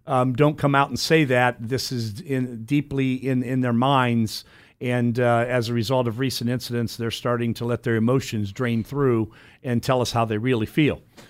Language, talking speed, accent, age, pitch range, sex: English, 200 wpm, American, 50-69, 120-145 Hz, male